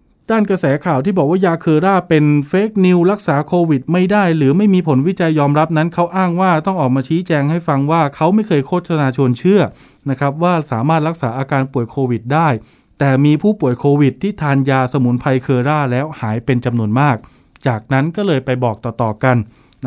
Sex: male